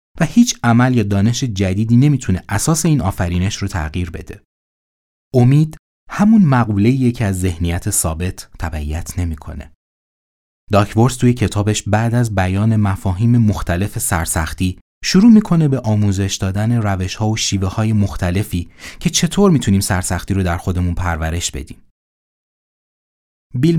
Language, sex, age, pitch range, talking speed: Persian, male, 30-49, 85-120 Hz, 130 wpm